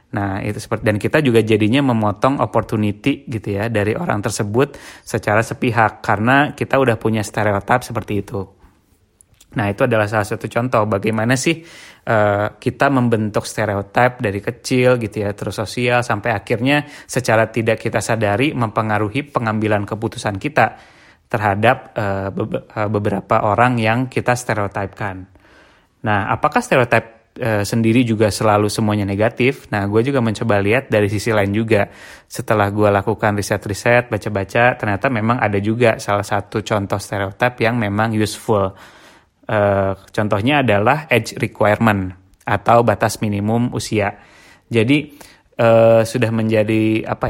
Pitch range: 105-120 Hz